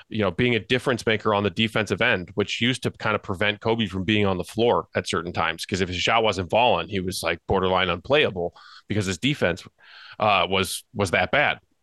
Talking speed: 225 wpm